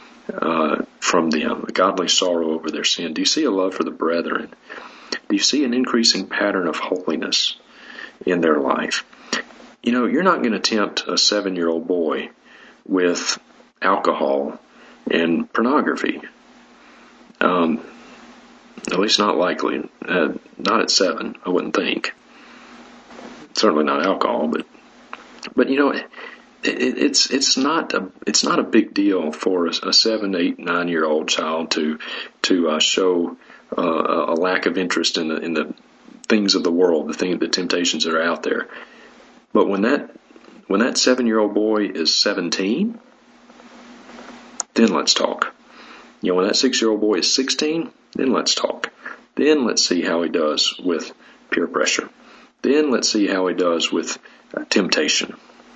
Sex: male